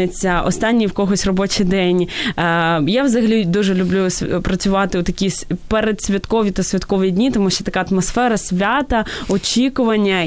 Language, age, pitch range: Ukrainian, 20-39, 185-225 Hz